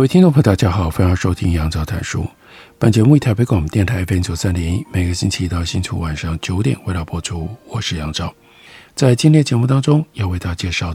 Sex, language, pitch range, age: male, Chinese, 85-120 Hz, 50-69